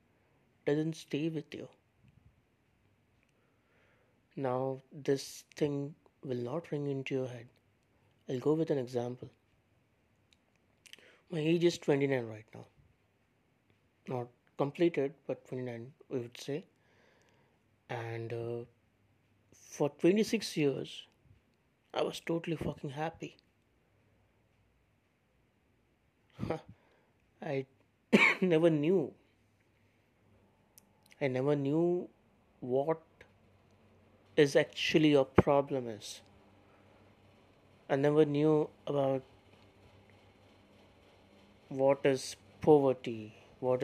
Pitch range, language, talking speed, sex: 100-140 Hz, English, 85 wpm, male